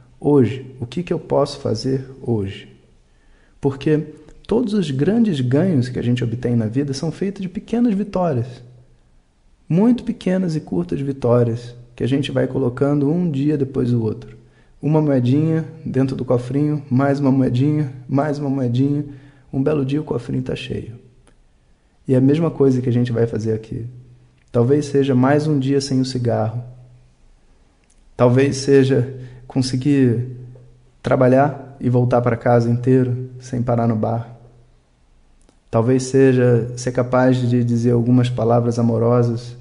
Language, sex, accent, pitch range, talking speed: Portuguese, male, Brazilian, 120-140 Hz, 150 wpm